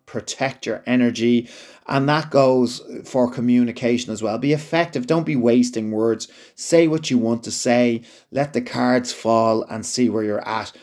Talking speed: 170 wpm